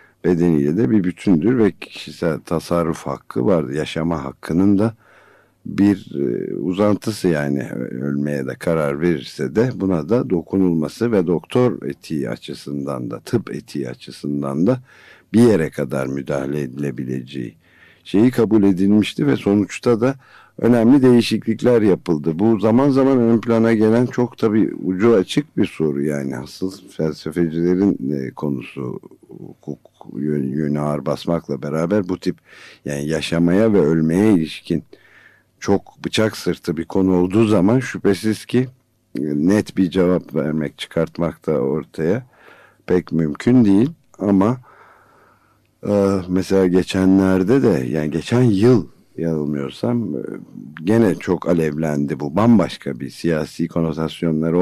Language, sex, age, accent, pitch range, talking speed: Turkish, male, 60-79, native, 75-110 Hz, 120 wpm